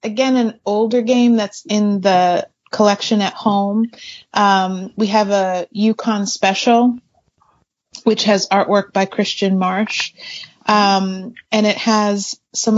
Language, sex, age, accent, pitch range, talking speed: English, female, 30-49, American, 180-210 Hz, 125 wpm